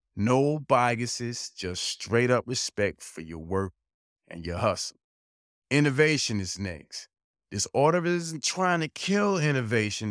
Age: 30-49